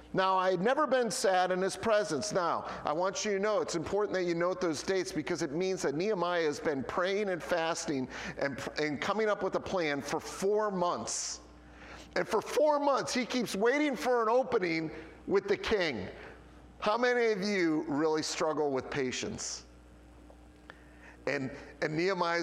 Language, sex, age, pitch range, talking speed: English, male, 40-59, 150-205 Hz, 175 wpm